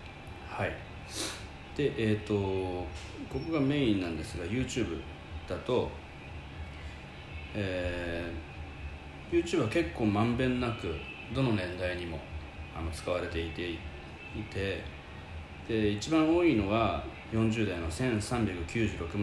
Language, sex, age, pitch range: Japanese, male, 40-59, 80-110 Hz